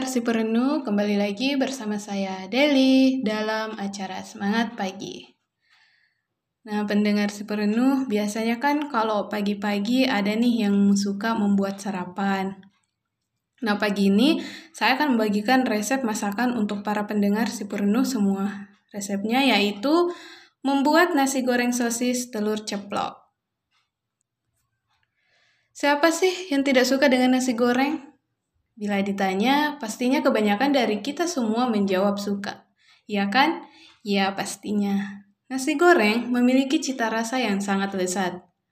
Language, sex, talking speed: Indonesian, female, 120 wpm